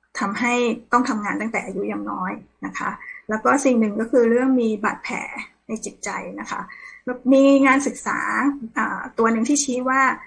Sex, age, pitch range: female, 20-39, 215-250 Hz